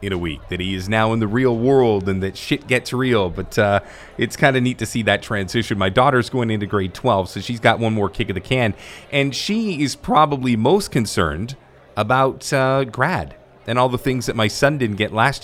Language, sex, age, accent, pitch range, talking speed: English, male, 30-49, American, 100-135 Hz, 235 wpm